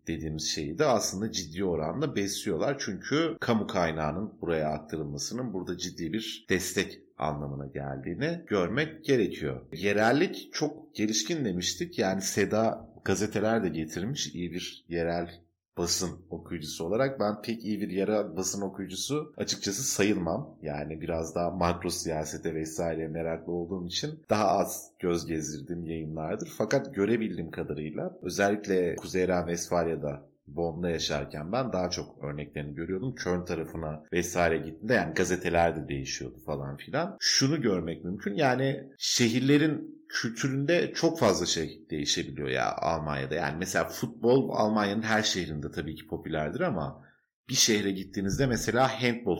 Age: 30-49